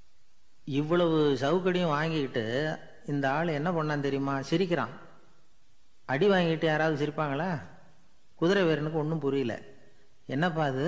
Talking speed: 100 wpm